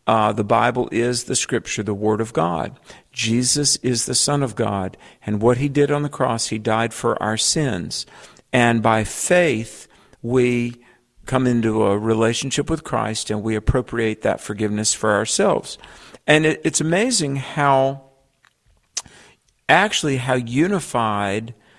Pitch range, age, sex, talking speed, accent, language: 110-140 Hz, 50-69, male, 145 wpm, American, English